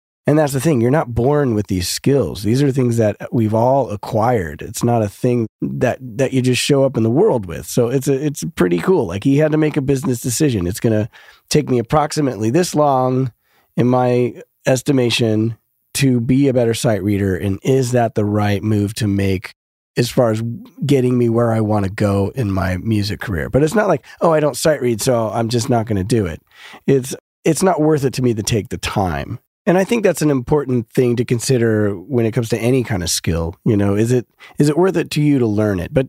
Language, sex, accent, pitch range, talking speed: English, male, American, 100-135 Hz, 240 wpm